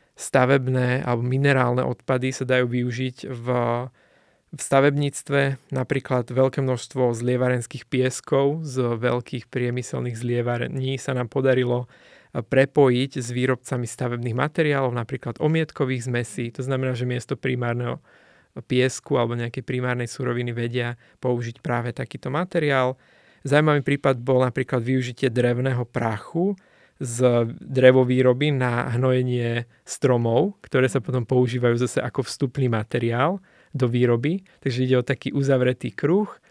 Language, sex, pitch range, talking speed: Slovak, male, 120-135 Hz, 120 wpm